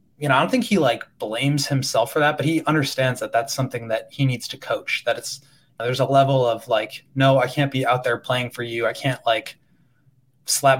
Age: 20-39